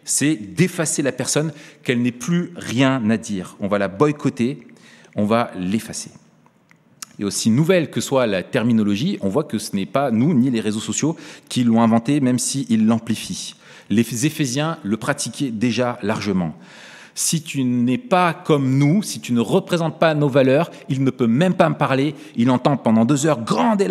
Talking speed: 190 wpm